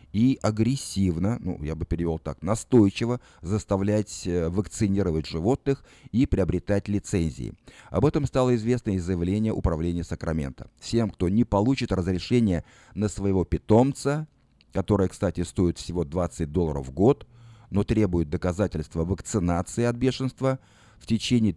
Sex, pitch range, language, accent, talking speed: male, 90-120 Hz, Russian, native, 130 wpm